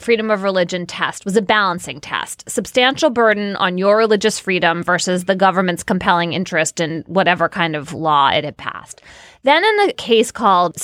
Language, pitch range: English, 195-265 Hz